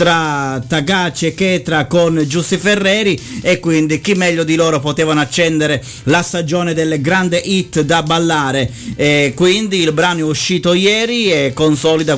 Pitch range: 145-180 Hz